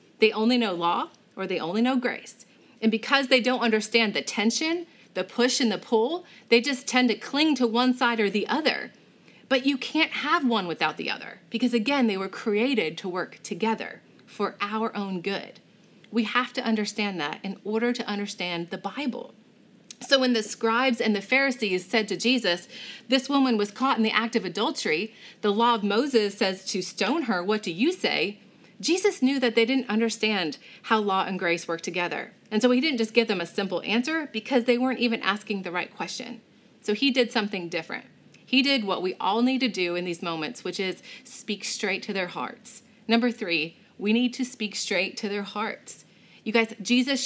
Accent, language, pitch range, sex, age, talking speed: American, English, 200-250 Hz, female, 30-49, 205 wpm